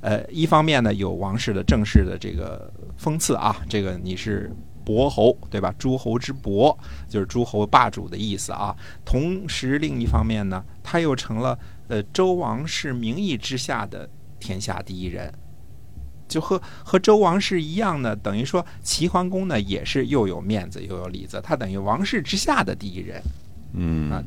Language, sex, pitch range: Chinese, male, 95-140 Hz